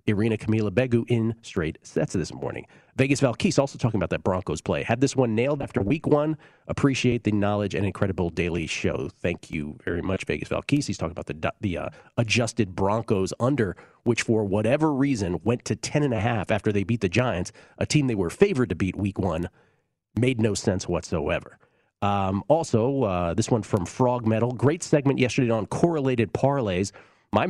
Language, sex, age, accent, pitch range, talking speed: English, male, 40-59, American, 100-135 Hz, 190 wpm